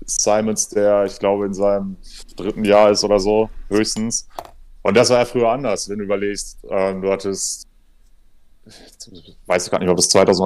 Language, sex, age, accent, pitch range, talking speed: German, male, 30-49, German, 95-110 Hz, 180 wpm